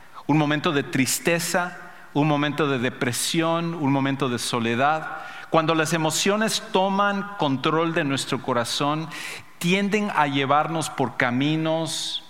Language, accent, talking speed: English, Mexican, 120 wpm